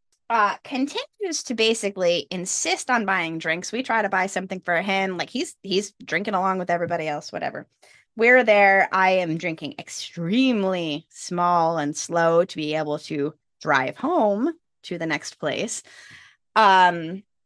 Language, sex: English, female